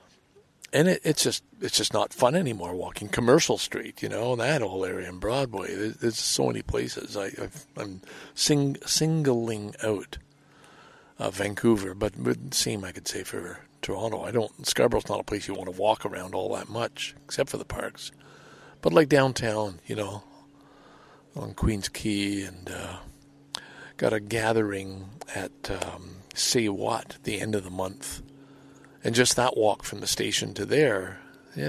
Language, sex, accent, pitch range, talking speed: English, male, American, 100-135 Hz, 170 wpm